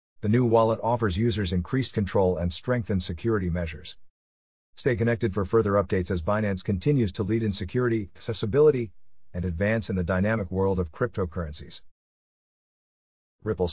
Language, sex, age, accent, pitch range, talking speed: English, male, 50-69, American, 95-125 Hz, 145 wpm